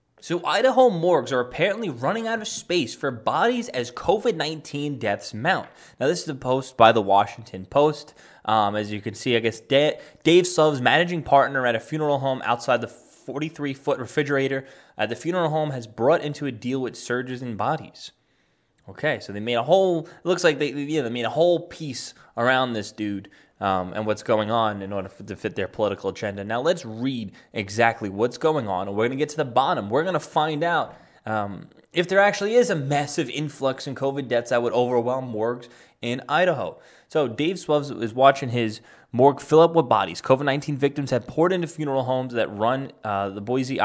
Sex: male